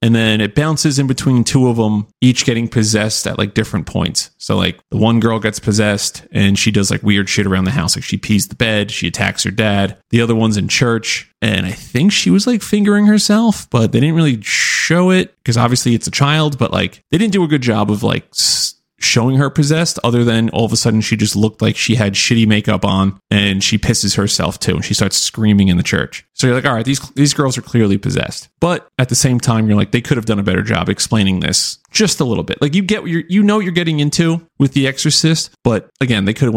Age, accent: 30-49, American